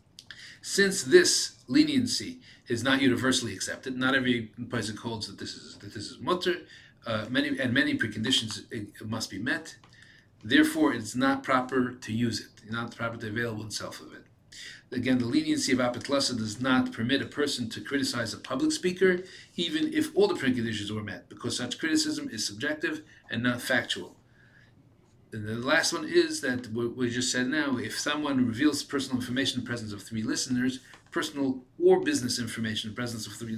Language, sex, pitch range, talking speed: English, male, 115-180 Hz, 175 wpm